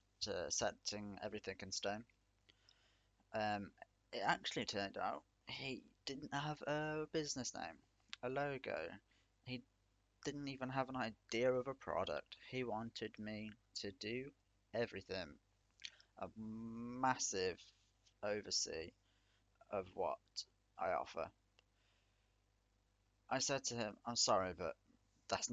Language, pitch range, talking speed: English, 100-125 Hz, 110 wpm